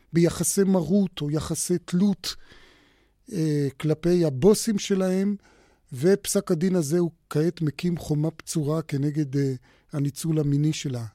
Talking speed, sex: 120 wpm, male